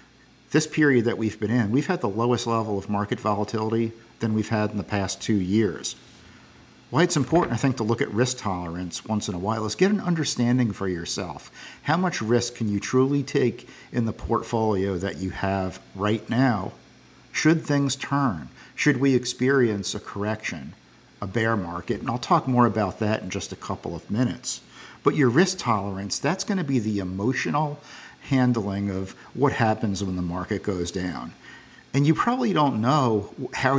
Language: English